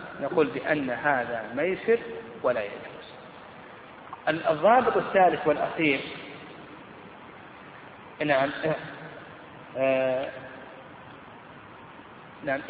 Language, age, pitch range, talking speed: Arabic, 30-49, 130-155 Hz, 60 wpm